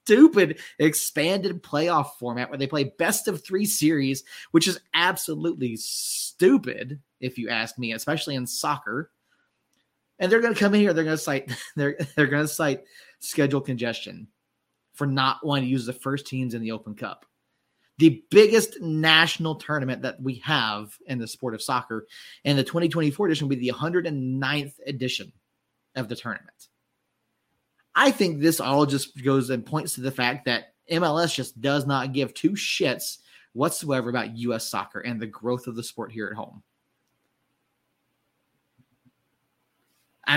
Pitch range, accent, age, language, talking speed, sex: 125-160 Hz, American, 30-49, English, 160 wpm, male